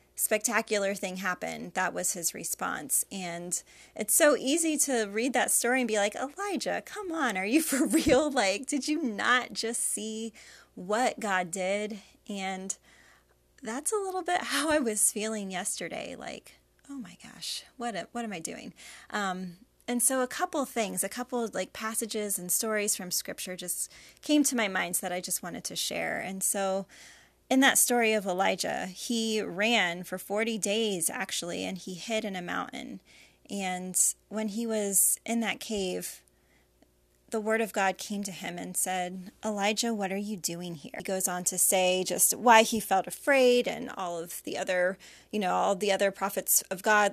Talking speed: 180 wpm